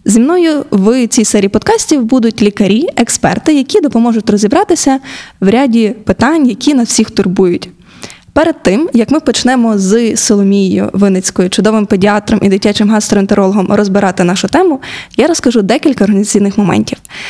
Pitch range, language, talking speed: 200-245 Hz, Ukrainian, 140 wpm